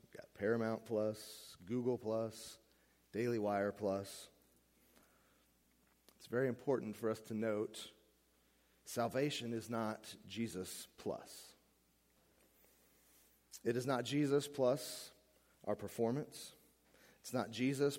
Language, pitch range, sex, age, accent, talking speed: English, 100-125 Hz, male, 30-49, American, 105 wpm